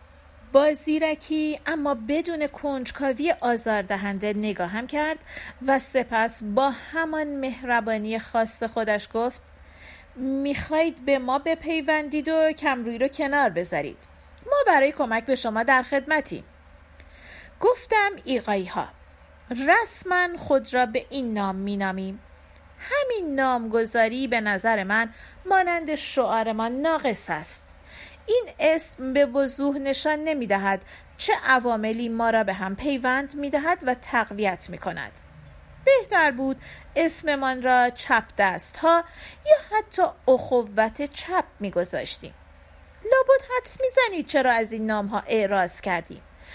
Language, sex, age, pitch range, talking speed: Persian, female, 40-59, 225-310 Hz, 120 wpm